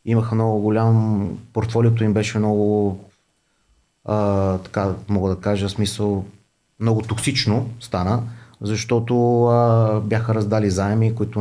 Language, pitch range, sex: Bulgarian, 100-120 Hz, male